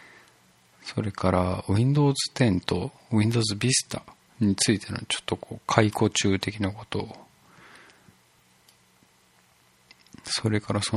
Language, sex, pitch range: Japanese, male, 95-125 Hz